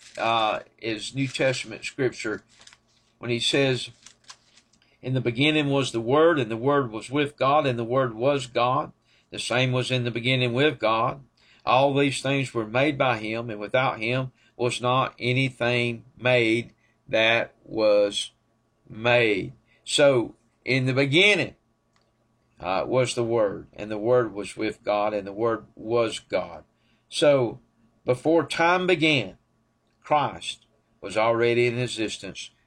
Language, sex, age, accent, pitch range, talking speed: English, male, 50-69, American, 115-135 Hz, 145 wpm